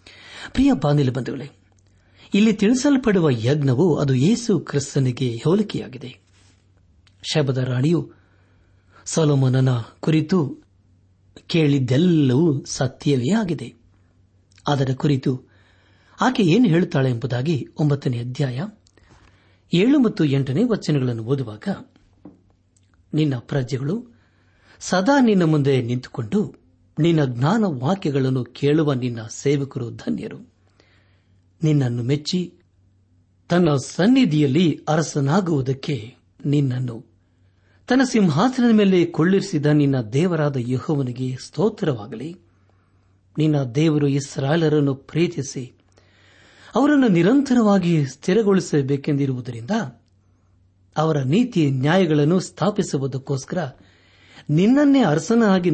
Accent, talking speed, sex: native, 75 wpm, male